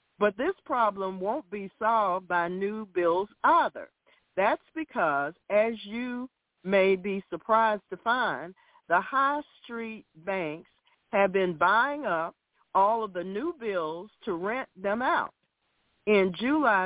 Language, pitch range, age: English, 180-230 Hz, 50-69